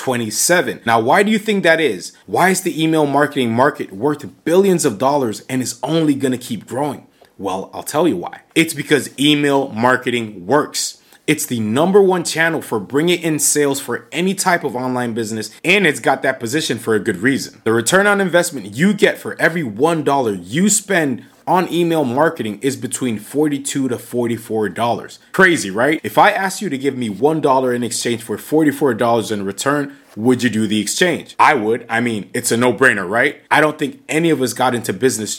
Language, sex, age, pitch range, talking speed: English, male, 30-49, 120-160 Hz, 200 wpm